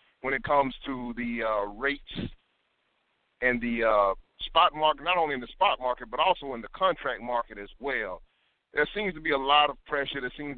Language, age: English, 50-69